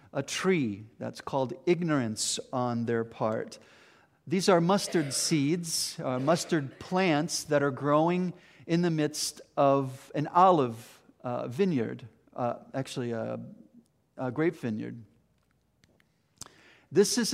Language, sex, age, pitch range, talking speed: English, male, 50-69, 130-165 Hz, 120 wpm